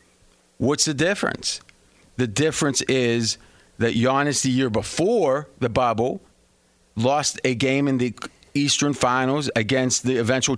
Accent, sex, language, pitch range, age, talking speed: American, male, English, 120-145 Hz, 30-49, 130 wpm